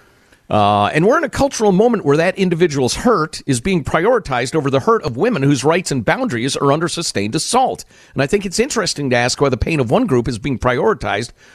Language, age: English, 50-69